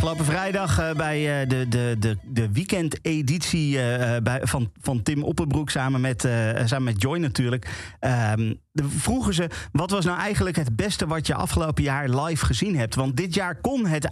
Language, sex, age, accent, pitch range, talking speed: Dutch, male, 40-59, Dutch, 120-160 Hz, 170 wpm